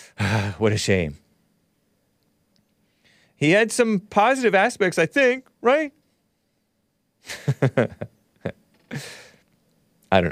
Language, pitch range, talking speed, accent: English, 130-185 Hz, 80 wpm, American